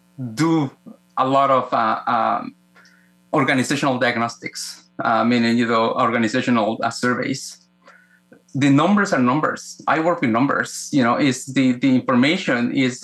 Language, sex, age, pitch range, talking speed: English, male, 20-39, 115-145 Hz, 140 wpm